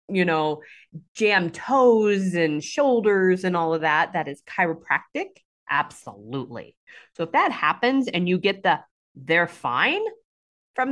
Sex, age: female, 30-49